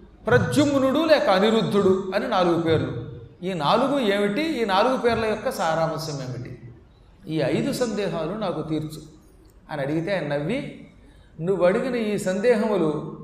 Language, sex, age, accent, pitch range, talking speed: Telugu, male, 40-59, native, 160-225 Hz, 125 wpm